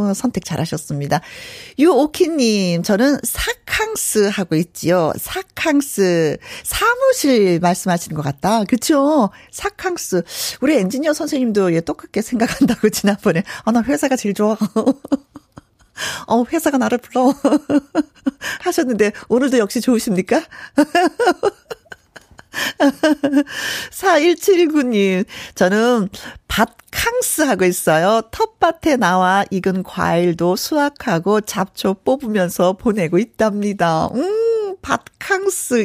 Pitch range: 185-285 Hz